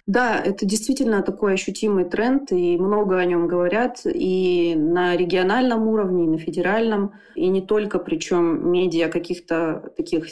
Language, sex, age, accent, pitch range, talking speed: Russian, female, 20-39, native, 180-230 Hz, 145 wpm